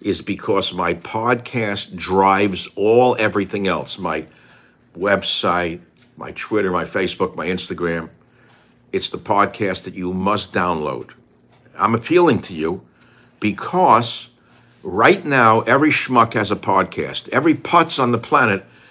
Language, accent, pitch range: English, American, 95-120 Hz